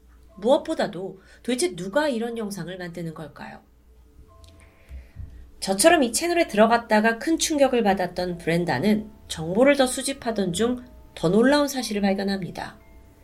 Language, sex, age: Korean, female, 30-49